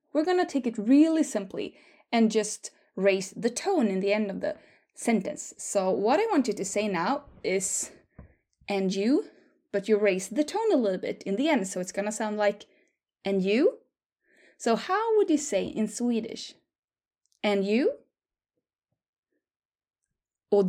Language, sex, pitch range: English, female, 205-310 Hz